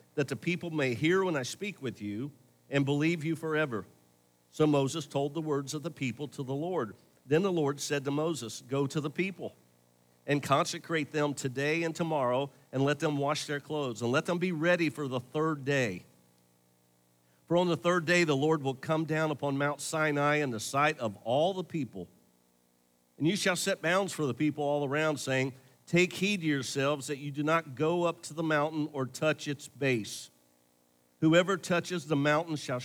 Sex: male